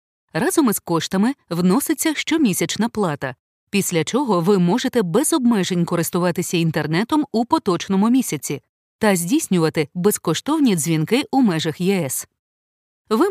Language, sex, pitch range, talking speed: Ukrainian, female, 165-230 Hz, 115 wpm